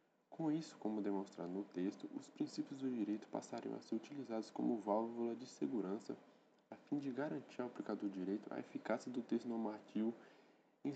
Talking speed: 175 wpm